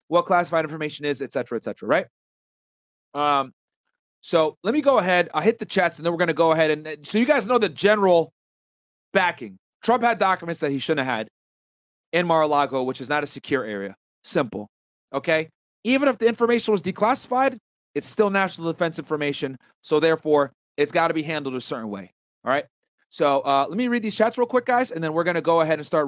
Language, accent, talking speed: English, American, 215 wpm